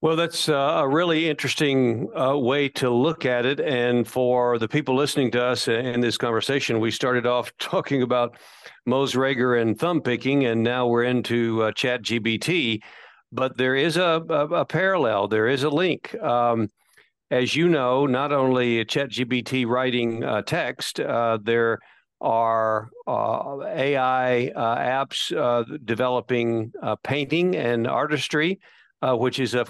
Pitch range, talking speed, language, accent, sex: 120-145 Hz, 155 wpm, English, American, male